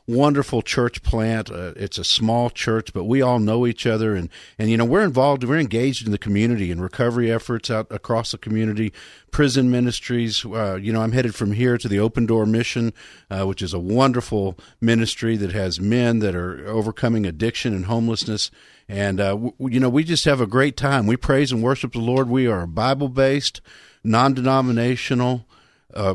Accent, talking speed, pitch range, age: American, 190 wpm, 100-130 Hz, 50-69